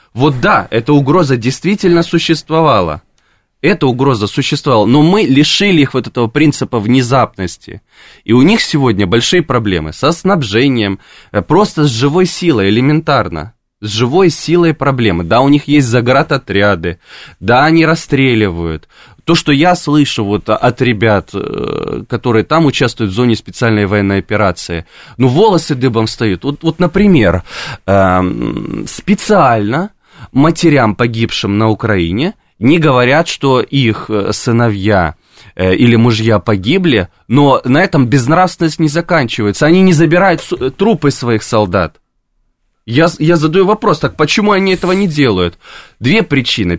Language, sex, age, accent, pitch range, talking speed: Russian, male, 20-39, native, 110-155 Hz, 130 wpm